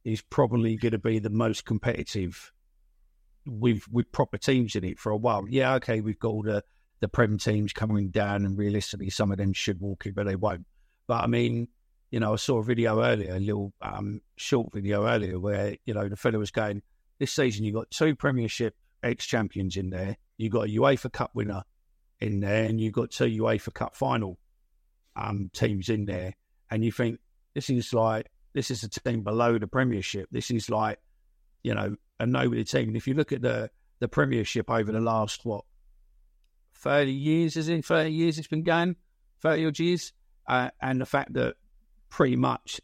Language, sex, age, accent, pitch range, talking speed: English, male, 50-69, British, 100-120 Hz, 200 wpm